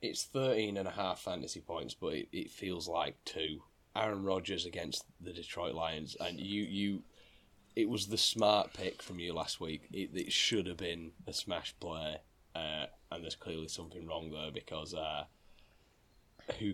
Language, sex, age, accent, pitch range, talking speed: English, male, 10-29, British, 80-95 Hz, 175 wpm